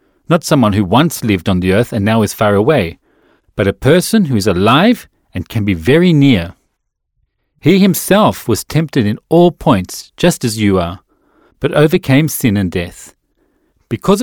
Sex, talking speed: male, 175 wpm